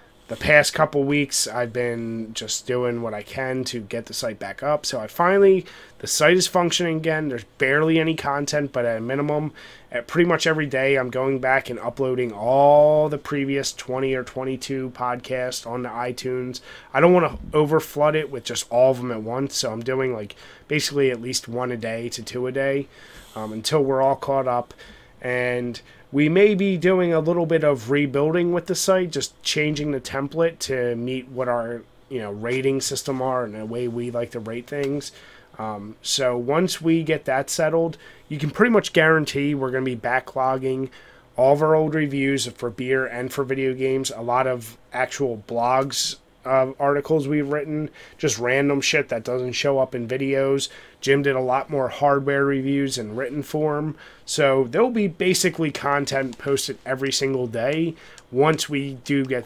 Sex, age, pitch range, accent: male, 30-49, 125-150 Hz, American